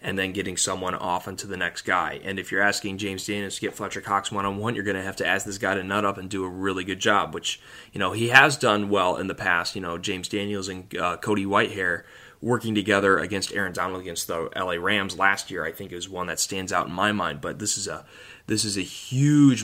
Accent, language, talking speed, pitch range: American, English, 255 wpm, 100-115 Hz